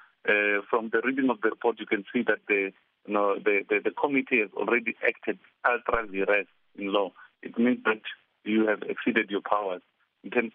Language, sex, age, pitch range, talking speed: English, male, 50-69, 105-120 Hz, 195 wpm